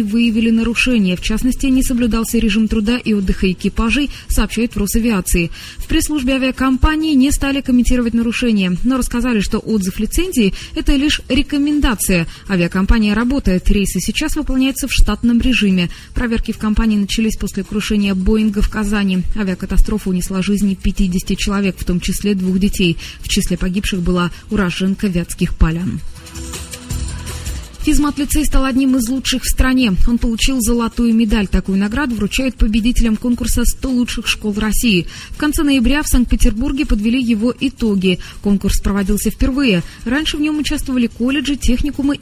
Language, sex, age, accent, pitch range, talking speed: Russian, female, 20-39, native, 195-260 Hz, 145 wpm